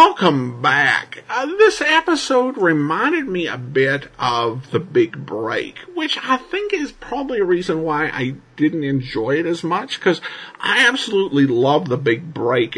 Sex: male